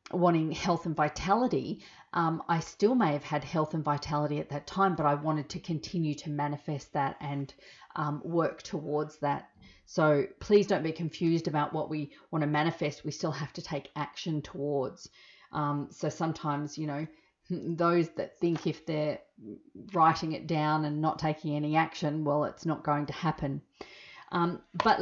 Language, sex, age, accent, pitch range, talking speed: English, female, 40-59, Australian, 150-180 Hz, 175 wpm